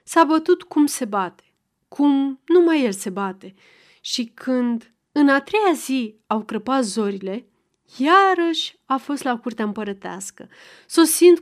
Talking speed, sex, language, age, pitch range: 140 wpm, female, Romanian, 30-49, 220-305 Hz